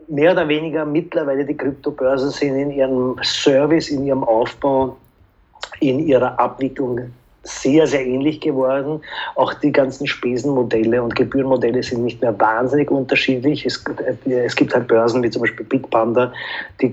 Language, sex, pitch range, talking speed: German, male, 120-140 Hz, 145 wpm